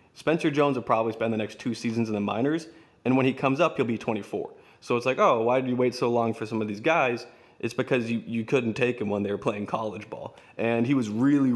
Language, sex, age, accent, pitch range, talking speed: English, male, 20-39, American, 110-135 Hz, 270 wpm